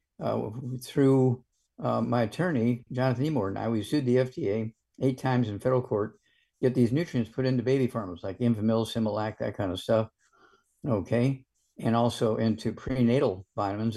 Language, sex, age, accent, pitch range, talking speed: English, male, 50-69, American, 115-130 Hz, 170 wpm